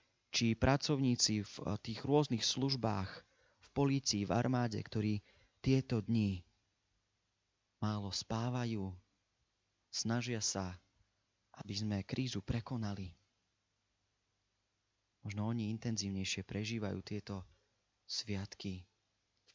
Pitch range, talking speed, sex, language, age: 95-115 Hz, 85 wpm, male, Slovak, 30-49